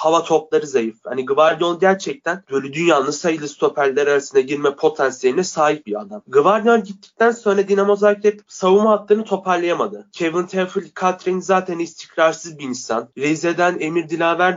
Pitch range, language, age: 140-195 Hz, Turkish, 30-49